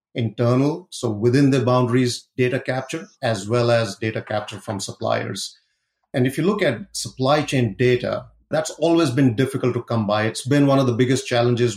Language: English